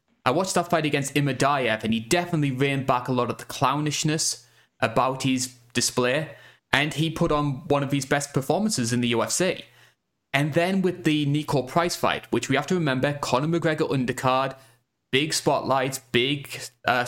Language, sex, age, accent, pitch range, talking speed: English, male, 20-39, British, 120-145 Hz, 175 wpm